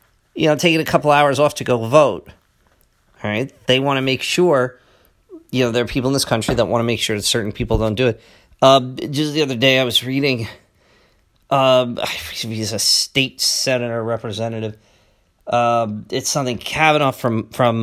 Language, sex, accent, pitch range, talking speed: English, male, American, 115-155 Hz, 190 wpm